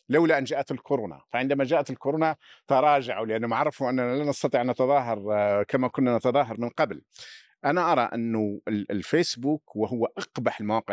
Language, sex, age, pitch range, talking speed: Arabic, male, 50-69, 115-145 Hz, 150 wpm